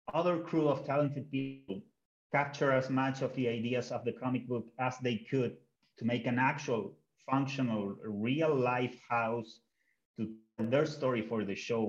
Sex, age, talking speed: male, 30-49, 160 wpm